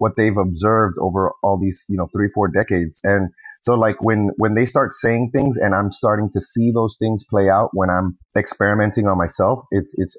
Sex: male